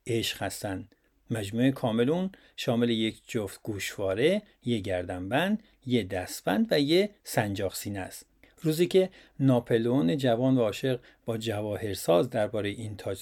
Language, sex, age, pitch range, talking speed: Persian, male, 50-69, 110-145 Hz, 125 wpm